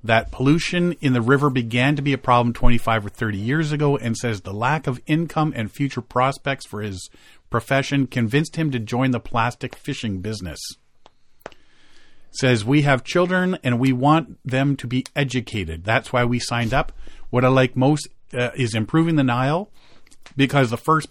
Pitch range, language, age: 110-140 Hz, English, 40-59